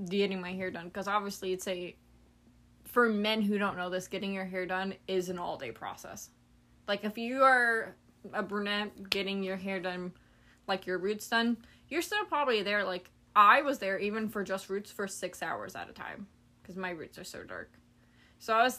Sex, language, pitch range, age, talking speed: female, English, 180-220 Hz, 20-39, 200 wpm